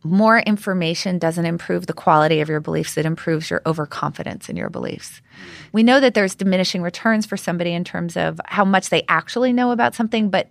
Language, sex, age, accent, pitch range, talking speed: English, female, 30-49, American, 170-210 Hz, 200 wpm